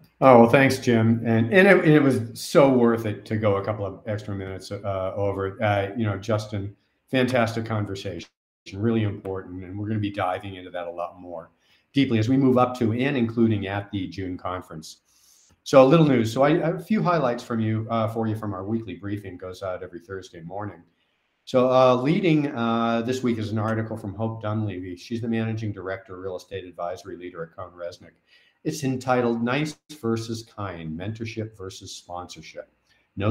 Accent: American